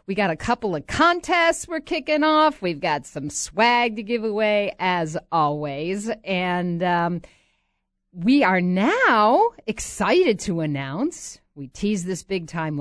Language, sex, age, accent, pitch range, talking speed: English, female, 50-69, American, 175-285 Hz, 145 wpm